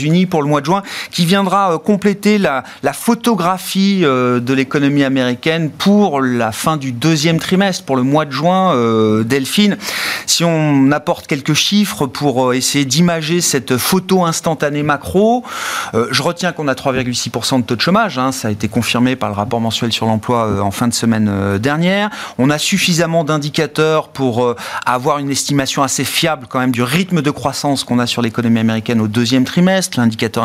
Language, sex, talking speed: French, male, 190 wpm